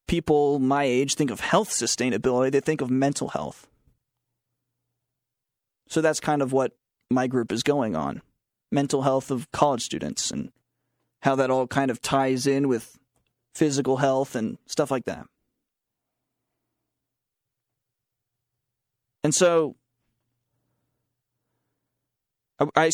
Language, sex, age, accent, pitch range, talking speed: English, male, 30-49, American, 120-145 Hz, 120 wpm